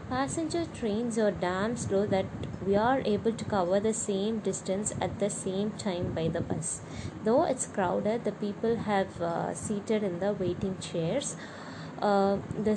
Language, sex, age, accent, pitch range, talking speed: English, female, 20-39, Indian, 180-215 Hz, 165 wpm